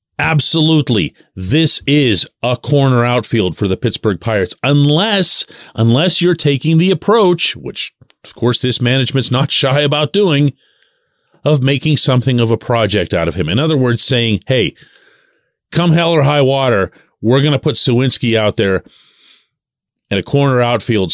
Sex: male